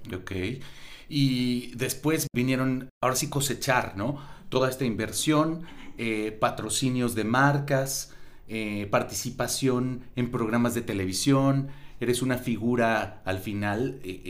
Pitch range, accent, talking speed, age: 100-125 Hz, Mexican, 115 wpm, 40-59